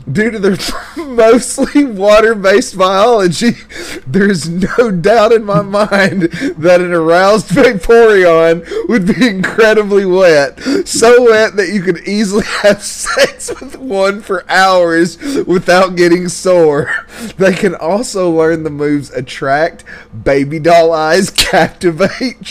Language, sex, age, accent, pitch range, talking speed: English, male, 30-49, American, 145-195 Hz, 125 wpm